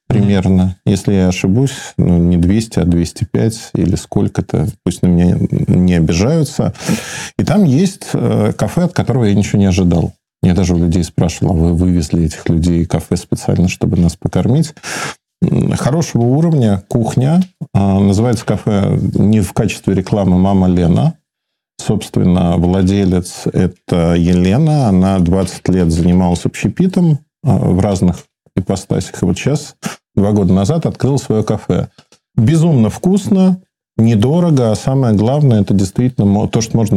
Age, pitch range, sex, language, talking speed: 40-59, 90-125 Hz, male, Russian, 135 wpm